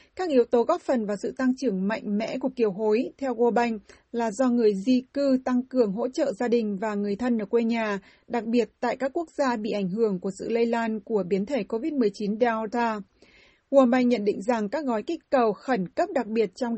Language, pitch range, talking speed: Vietnamese, 220-260 Hz, 235 wpm